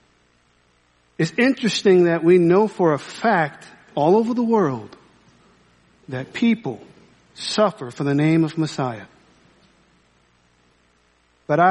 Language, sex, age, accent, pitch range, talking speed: English, male, 50-69, American, 135-230 Hz, 110 wpm